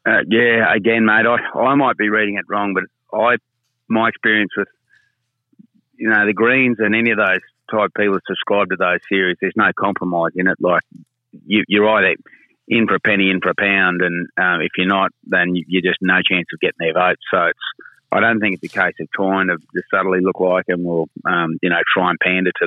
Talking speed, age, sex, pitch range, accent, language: 230 wpm, 30-49, male, 90-105 Hz, Australian, English